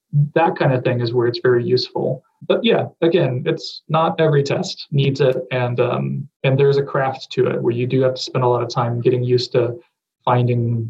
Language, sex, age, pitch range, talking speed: English, male, 30-49, 125-140 Hz, 220 wpm